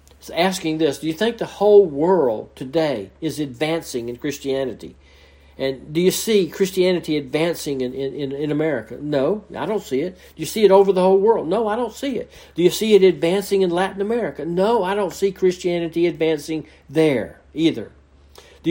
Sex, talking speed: male, 185 wpm